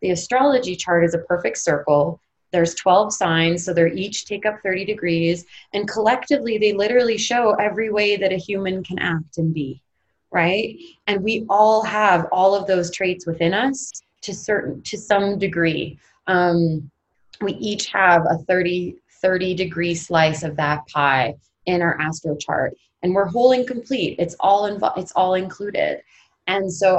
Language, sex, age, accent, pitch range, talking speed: English, female, 20-39, American, 165-200 Hz, 170 wpm